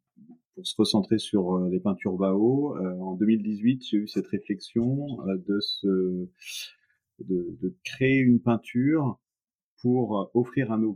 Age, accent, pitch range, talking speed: 30-49, French, 90-110 Hz, 130 wpm